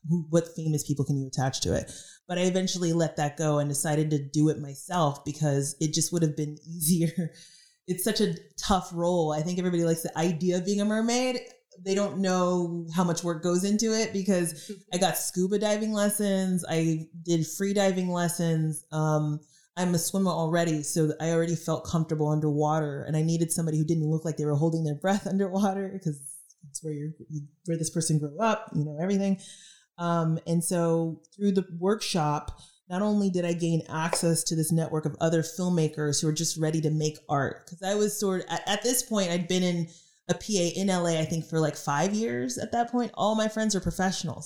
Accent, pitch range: American, 155-185 Hz